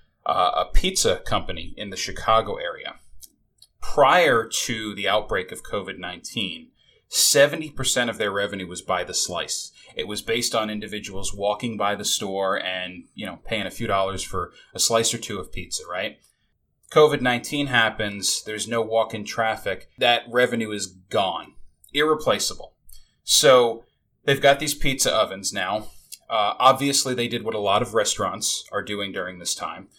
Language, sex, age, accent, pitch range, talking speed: English, male, 30-49, American, 105-140 Hz, 155 wpm